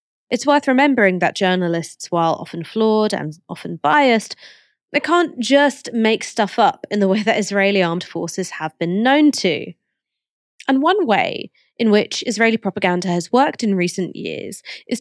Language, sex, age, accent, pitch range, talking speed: English, female, 20-39, British, 180-250 Hz, 165 wpm